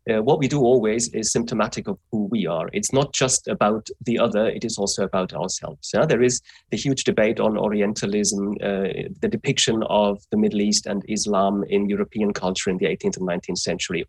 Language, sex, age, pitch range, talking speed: English, male, 30-49, 100-125 Hz, 200 wpm